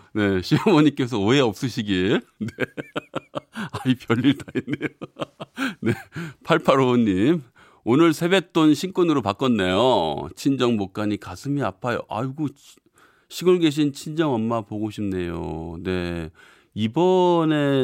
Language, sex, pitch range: Korean, male, 95-140 Hz